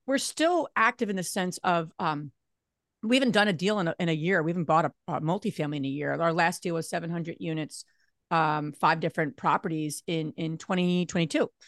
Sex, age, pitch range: female, 40-59, 160-210 Hz